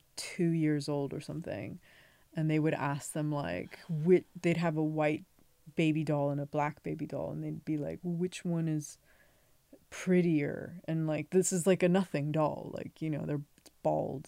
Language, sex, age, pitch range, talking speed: English, female, 20-39, 145-180 Hz, 185 wpm